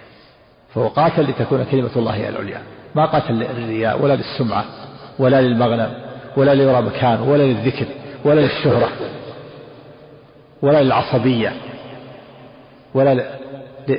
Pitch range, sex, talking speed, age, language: 120-140 Hz, male, 95 wpm, 50-69, Arabic